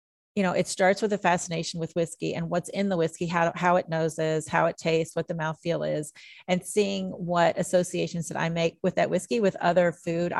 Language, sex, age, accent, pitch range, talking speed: English, female, 30-49, American, 165-195 Hz, 220 wpm